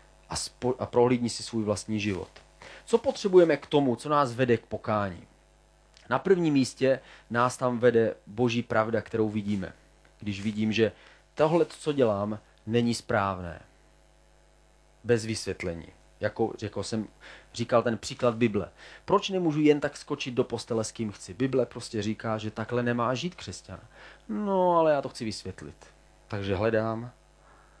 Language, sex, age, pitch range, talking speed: Czech, male, 30-49, 110-145 Hz, 150 wpm